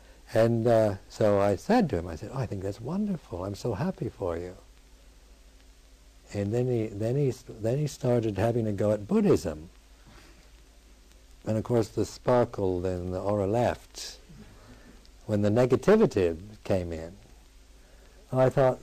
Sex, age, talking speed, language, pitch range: male, 60-79, 155 wpm, English, 90-120 Hz